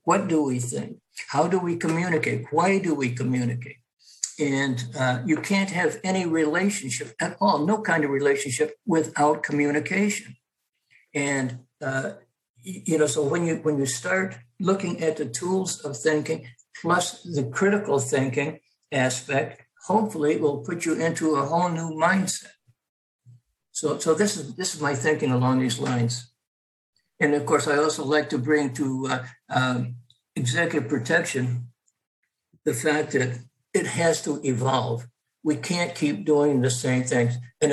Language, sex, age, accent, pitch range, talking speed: English, male, 60-79, American, 130-165 Hz, 155 wpm